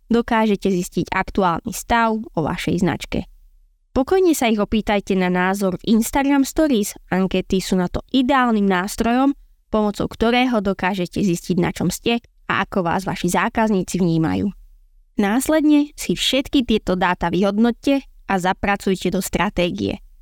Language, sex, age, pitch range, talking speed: Slovak, female, 20-39, 185-235 Hz, 135 wpm